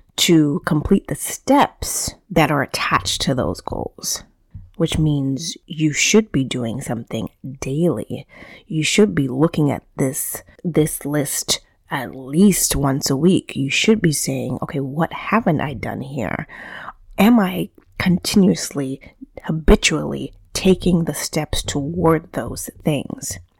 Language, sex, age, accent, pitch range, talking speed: English, female, 30-49, American, 140-195 Hz, 130 wpm